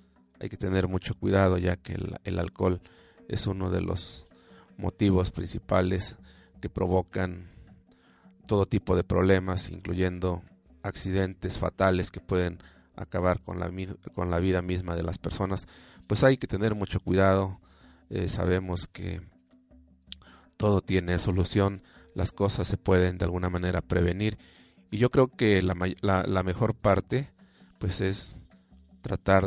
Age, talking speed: 30-49, 140 wpm